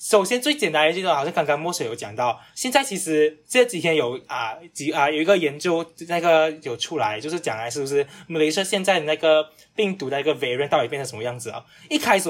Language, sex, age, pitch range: Chinese, male, 10-29, 145-200 Hz